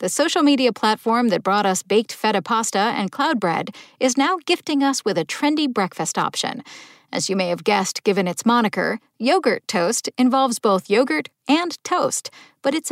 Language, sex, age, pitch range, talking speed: English, female, 50-69, 195-275 Hz, 180 wpm